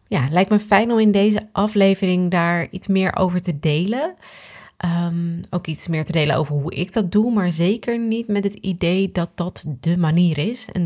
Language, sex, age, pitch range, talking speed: Dutch, female, 20-39, 165-200 Hz, 200 wpm